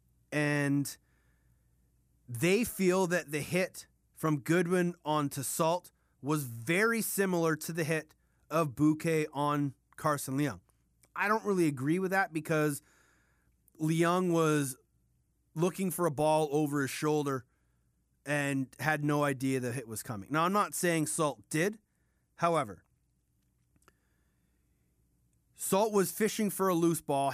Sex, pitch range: male, 140-170 Hz